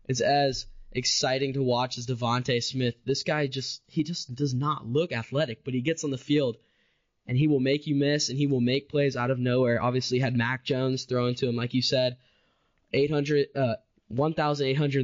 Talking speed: 215 wpm